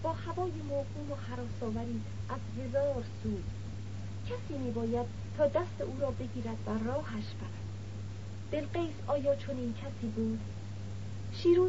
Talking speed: 130 wpm